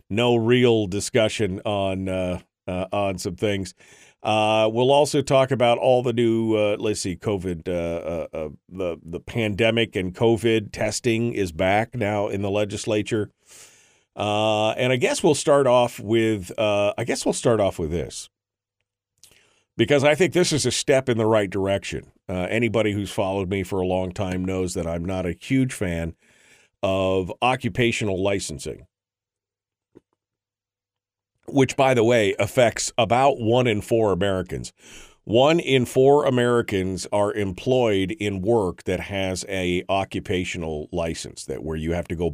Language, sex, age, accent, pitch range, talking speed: English, male, 50-69, American, 95-115 Hz, 155 wpm